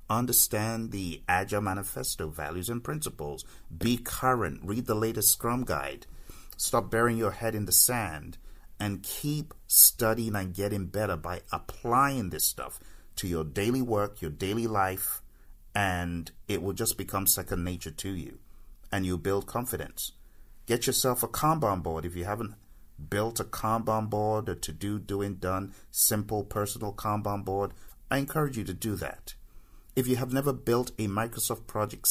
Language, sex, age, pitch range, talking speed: English, male, 50-69, 95-115 Hz, 160 wpm